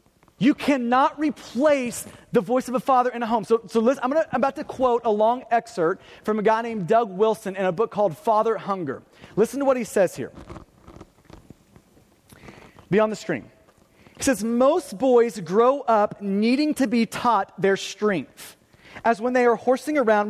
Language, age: English, 30-49